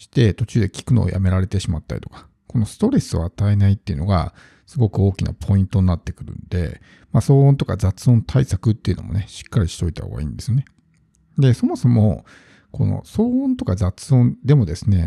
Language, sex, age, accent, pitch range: Japanese, male, 50-69, native, 95-135 Hz